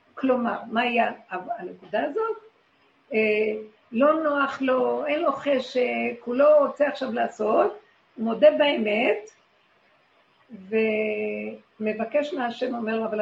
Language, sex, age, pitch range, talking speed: Hebrew, female, 50-69, 225-295 Hz, 115 wpm